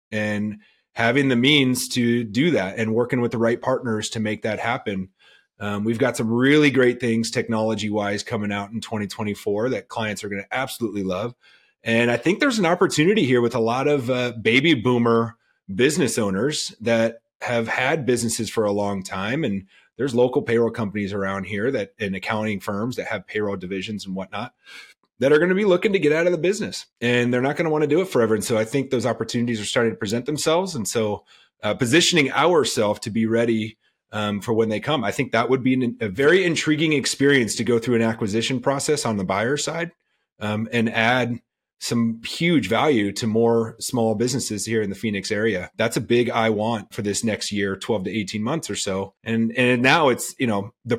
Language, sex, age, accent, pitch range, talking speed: English, male, 30-49, American, 105-130 Hz, 210 wpm